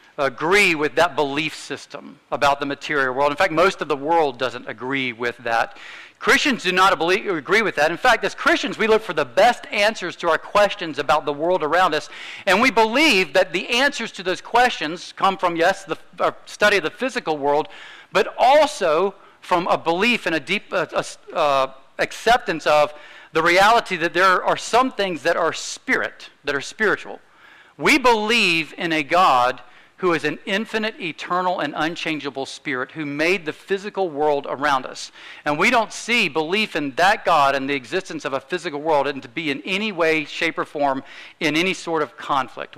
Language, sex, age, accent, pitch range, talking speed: English, male, 50-69, American, 150-200 Hz, 190 wpm